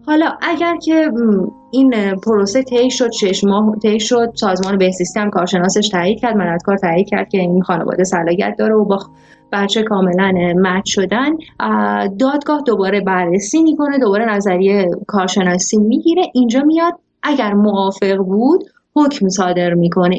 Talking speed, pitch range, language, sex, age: 135 wpm, 190-245 Hz, Persian, female, 30-49